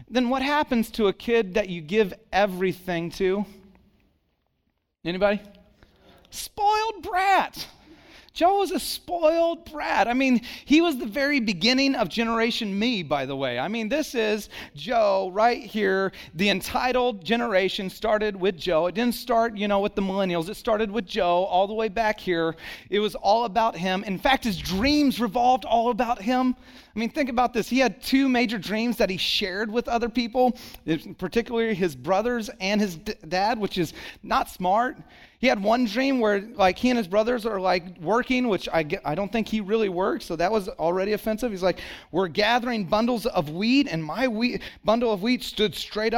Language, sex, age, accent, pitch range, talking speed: English, male, 30-49, American, 190-250 Hz, 185 wpm